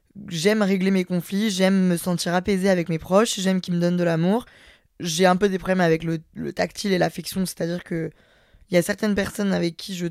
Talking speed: 220 wpm